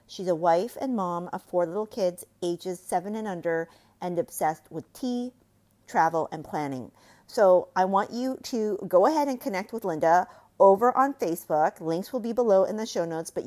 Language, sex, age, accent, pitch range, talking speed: English, female, 40-59, American, 175-240 Hz, 190 wpm